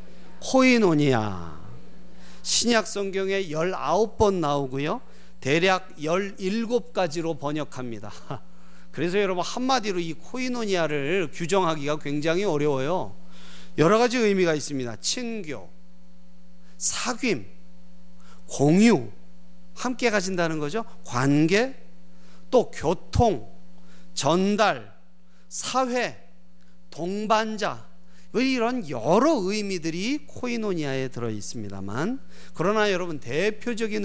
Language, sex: Korean, male